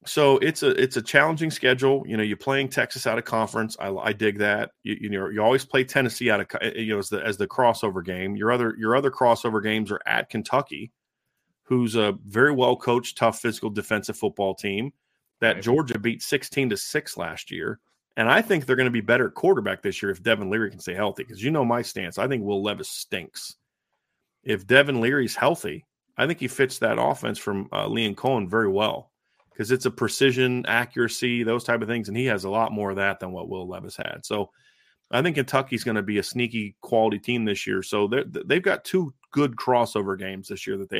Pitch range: 110-130 Hz